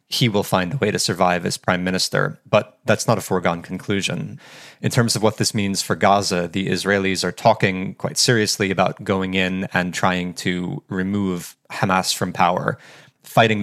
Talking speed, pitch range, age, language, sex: 180 wpm, 90-105 Hz, 30-49, English, male